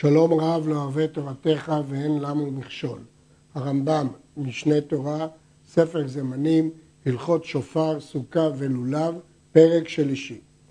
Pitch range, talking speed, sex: 150-185 Hz, 105 wpm, male